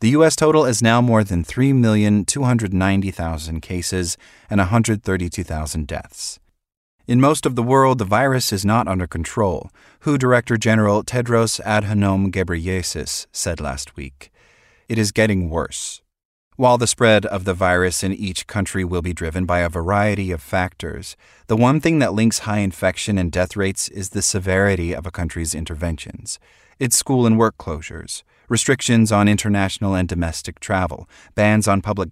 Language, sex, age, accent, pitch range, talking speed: English, male, 30-49, American, 90-115 Hz, 155 wpm